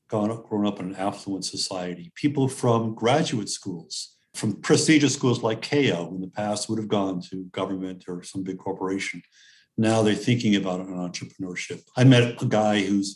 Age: 50-69